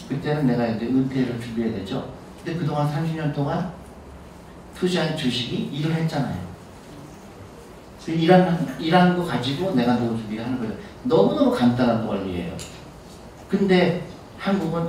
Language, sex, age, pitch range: Korean, male, 50-69, 120-165 Hz